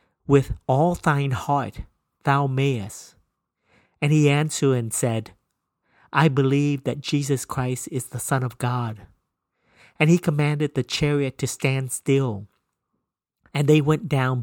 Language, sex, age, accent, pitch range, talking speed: English, male, 50-69, American, 120-145 Hz, 135 wpm